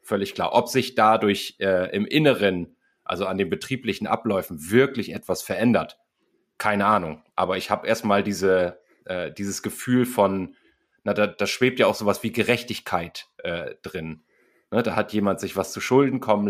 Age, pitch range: 30-49, 95-120 Hz